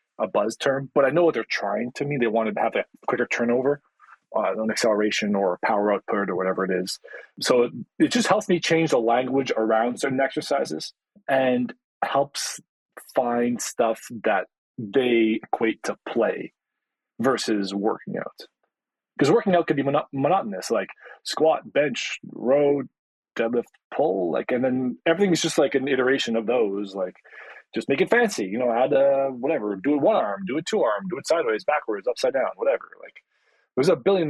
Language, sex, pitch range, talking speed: English, male, 120-185 Hz, 185 wpm